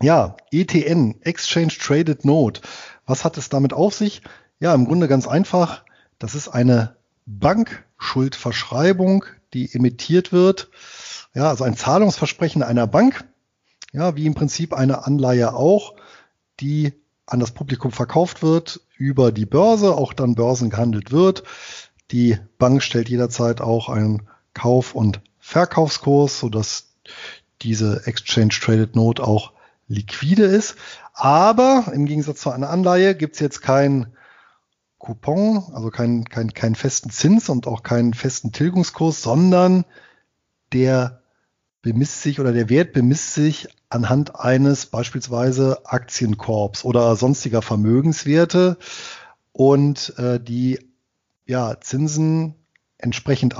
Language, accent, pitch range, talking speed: German, German, 120-160 Hz, 125 wpm